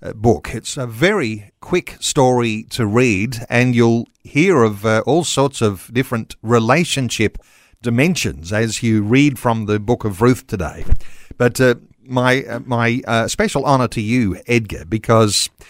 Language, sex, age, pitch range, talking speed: English, male, 50-69, 115-135 Hz, 155 wpm